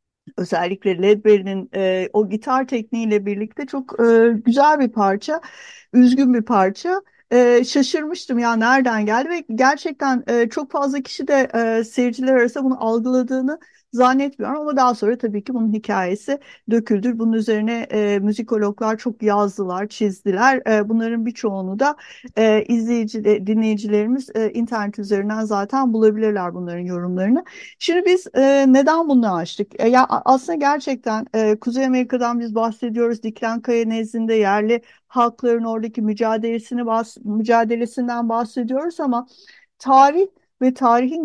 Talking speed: 130 wpm